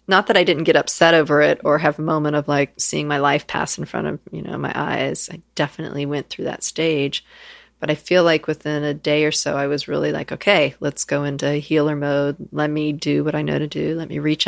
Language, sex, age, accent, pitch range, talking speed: English, female, 40-59, American, 145-175 Hz, 255 wpm